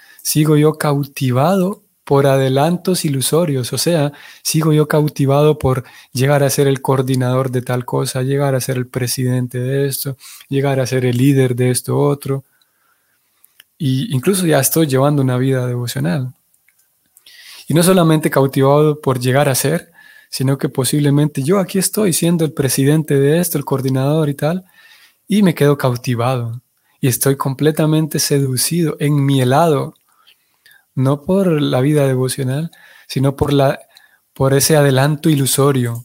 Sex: male